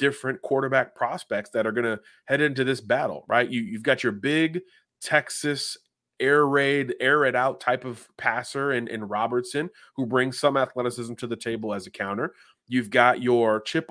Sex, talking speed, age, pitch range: male, 175 wpm, 30-49, 115-145 Hz